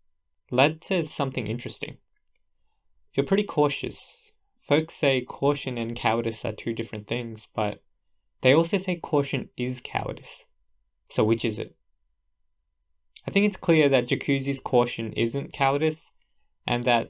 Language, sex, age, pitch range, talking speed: English, male, 20-39, 110-140 Hz, 130 wpm